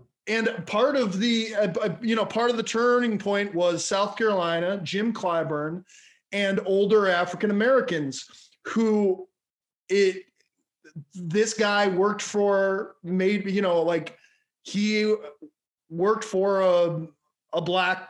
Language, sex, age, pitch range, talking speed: English, male, 30-49, 175-205 Hz, 120 wpm